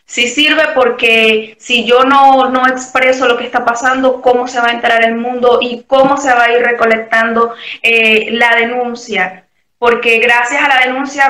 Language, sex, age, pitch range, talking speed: Spanish, female, 20-39, 220-250 Hz, 185 wpm